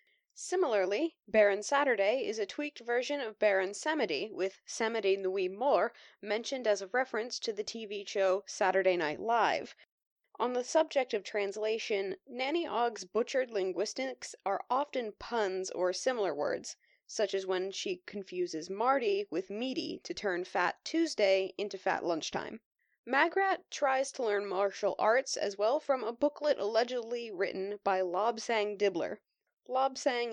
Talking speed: 140 wpm